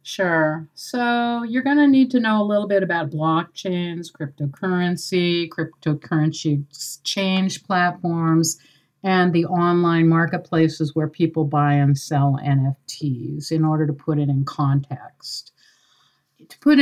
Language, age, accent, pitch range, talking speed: English, 50-69, American, 150-180 Hz, 130 wpm